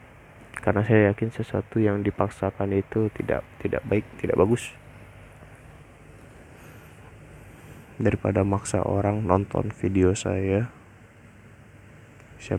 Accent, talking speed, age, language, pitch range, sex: native, 90 wpm, 20-39, Indonesian, 95-115 Hz, male